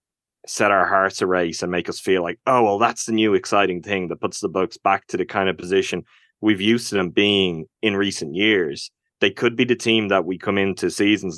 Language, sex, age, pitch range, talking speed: English, male, 20-39, 95-110 Hz, 235 wpm